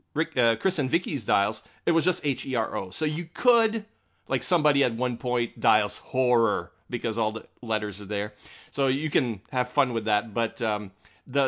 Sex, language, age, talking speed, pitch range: male, English, 30-49, 205 wpm, 110-140 Hz